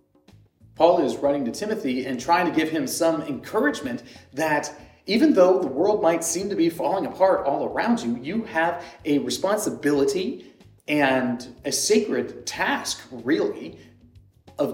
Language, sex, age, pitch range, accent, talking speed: English, male, 30-49, 135-230 Hz, American, 145 wpm